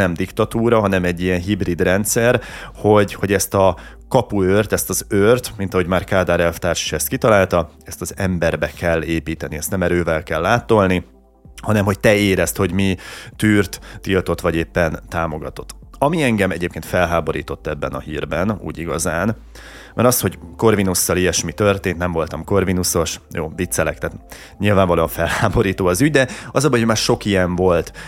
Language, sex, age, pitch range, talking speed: Hungarian, male, 30-49, 85-100 Hz, 165 wpm